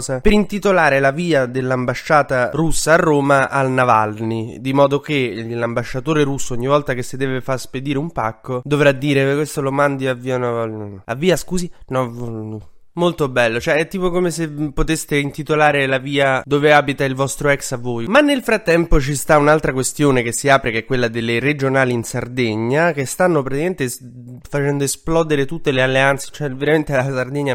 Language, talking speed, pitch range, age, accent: Italian, 185 wpm, 120-150 Hz, 20-39, native